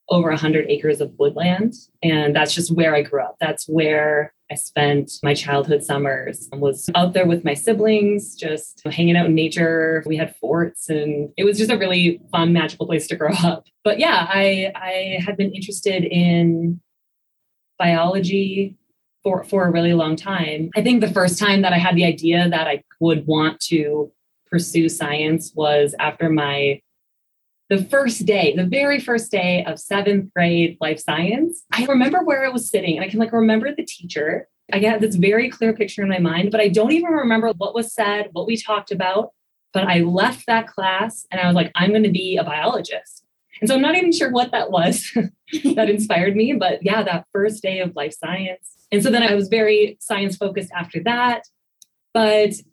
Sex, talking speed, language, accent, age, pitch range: female, 195 wpm, English, American, 20-39, 165-215 Hz